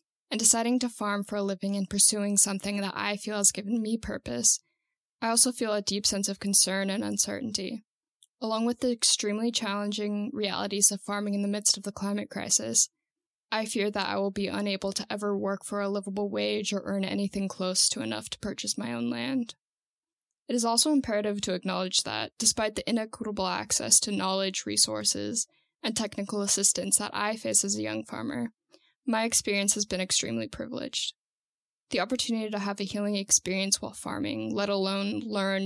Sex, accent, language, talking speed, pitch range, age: female, American, English, 185 wpm, 195-225 Hz, 10-29